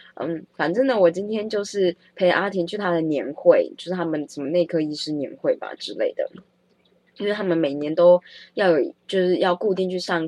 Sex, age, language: female, 20-39, Chinese